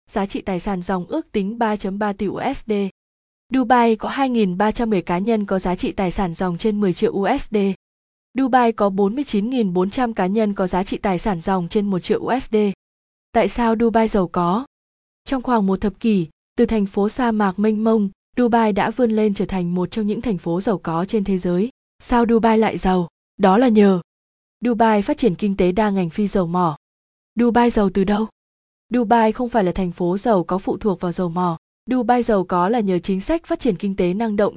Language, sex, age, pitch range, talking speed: Vietnamese, female, 20-39, 190-235 Hz, 210 wpm